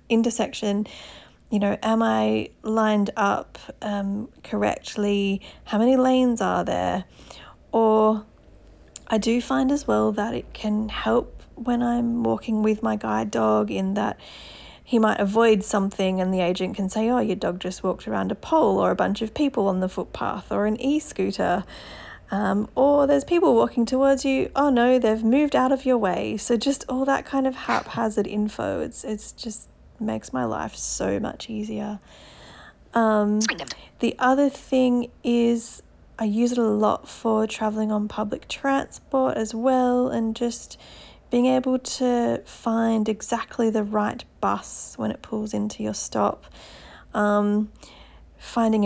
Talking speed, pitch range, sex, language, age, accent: 160 wpm, 205-245 Hz, female, English, 40-59, Australian